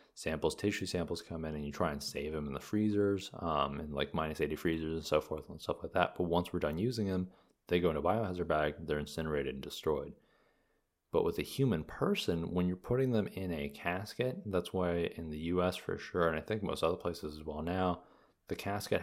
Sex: male